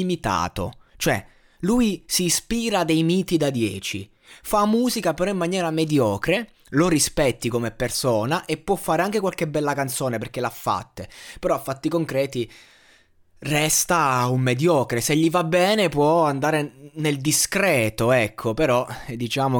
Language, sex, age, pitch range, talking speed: Italian, male, 20-39, 120-160 Hz, 145 wpm